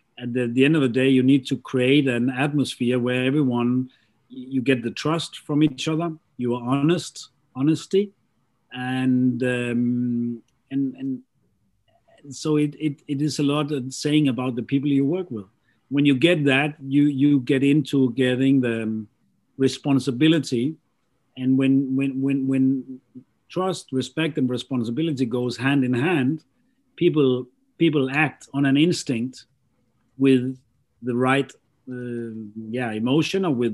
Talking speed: 150 wpm